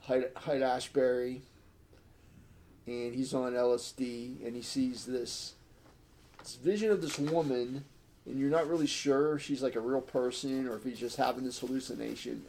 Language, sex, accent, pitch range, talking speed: English, male, American, 110-140 Hz, 165 wpm